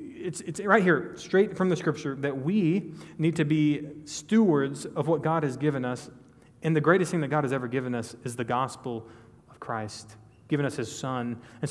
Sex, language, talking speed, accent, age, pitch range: male, English, 205 wpm, American, 30-49, 120-150 Hz